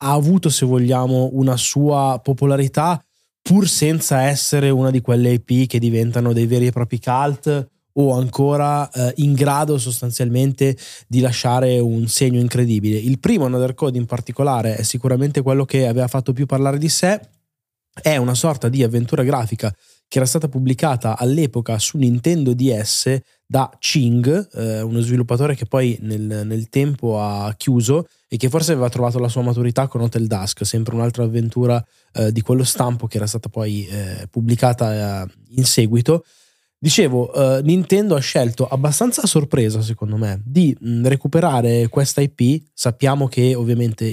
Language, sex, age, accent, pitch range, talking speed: Italian, male, 20-39, native, 115-140 Hz, 155 wpm